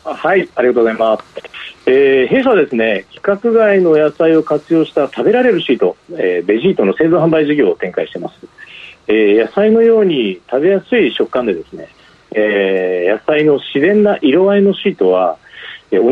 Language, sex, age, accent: Japanese, male, 40-59, native